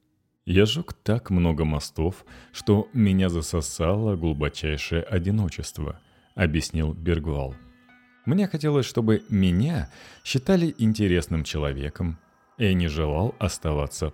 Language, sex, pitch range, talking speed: Russian, male, 80-115 Hz, 100 wpm